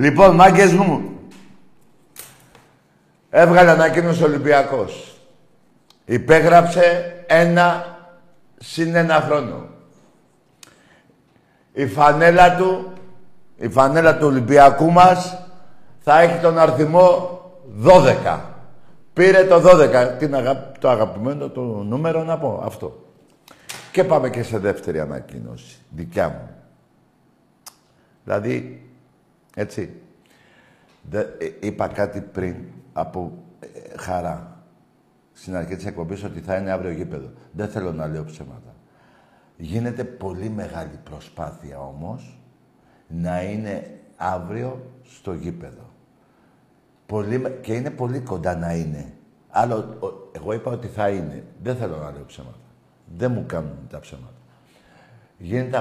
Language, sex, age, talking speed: Greek, male, 50-69, 110 wpm